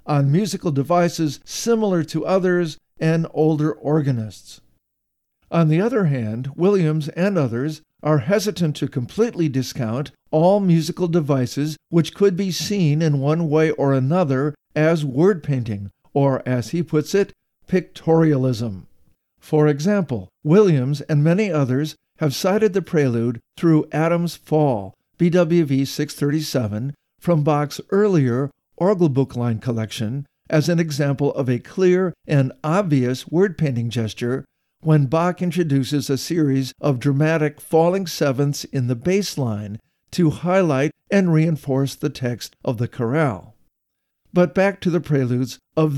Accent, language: American, English